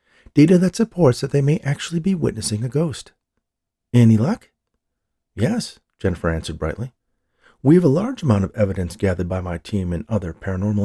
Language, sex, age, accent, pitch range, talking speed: English, male, 40-59, American, 95-140 Hz, 170 wpm